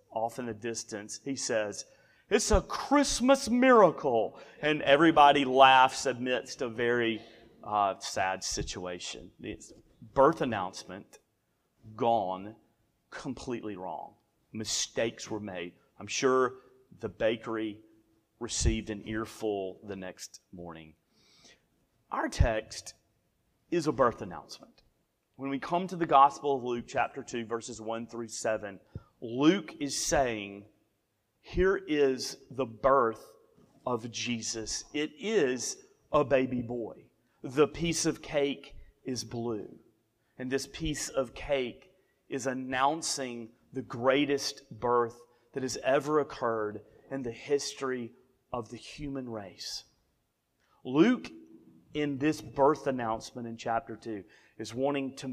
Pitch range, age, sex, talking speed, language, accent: 110-140 Hz, 30-49, male, 120 wpm, English, American